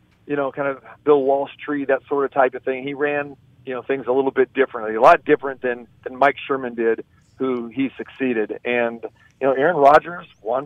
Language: English